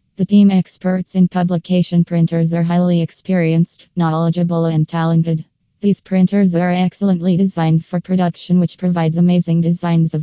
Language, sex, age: English, female, 20-39